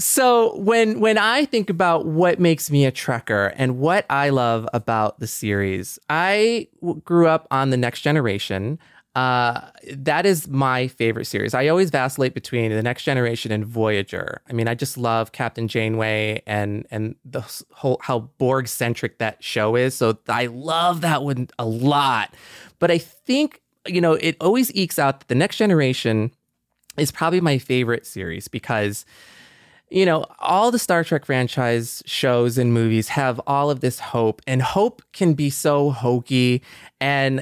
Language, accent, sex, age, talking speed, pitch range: English, American, male, 20-39, 170 wpm, 115-160 Hz